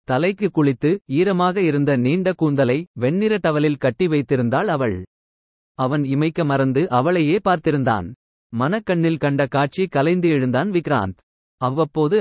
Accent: native